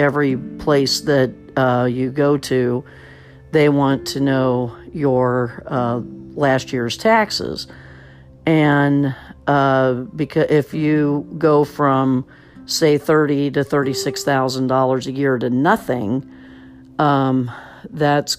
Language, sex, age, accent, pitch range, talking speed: English, female, 50-69, American, 130-140 Hz, 110 wpm